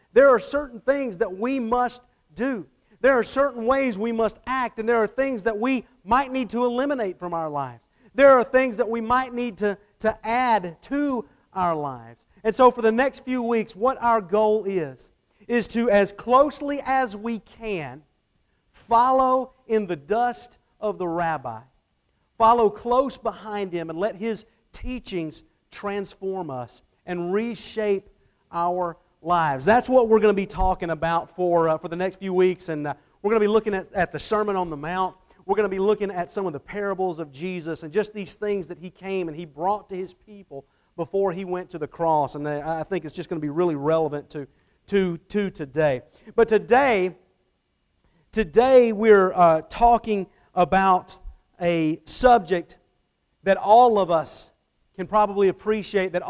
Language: English